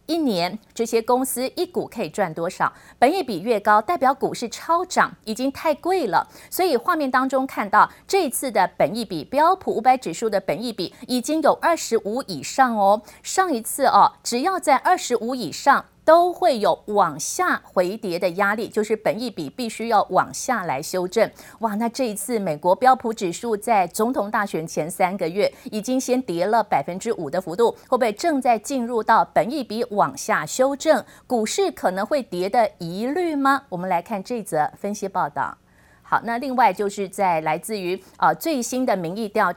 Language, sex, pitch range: Chinese, female, 195-265 Hz